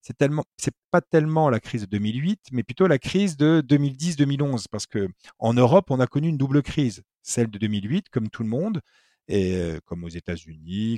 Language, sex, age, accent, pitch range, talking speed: French, male, 50-69, French, 105-150 Hz, 190 wpm